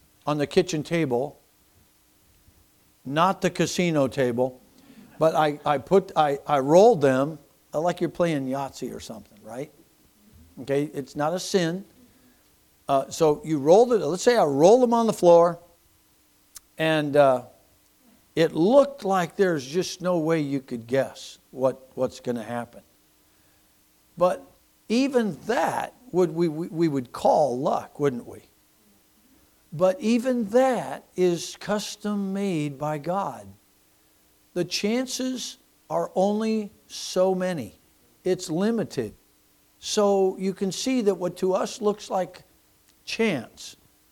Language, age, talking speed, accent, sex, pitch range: English, 60-79, 130 wpm, American, male, 135-200 Hz